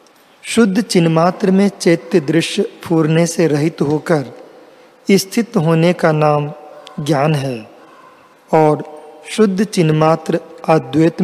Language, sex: Hindi, male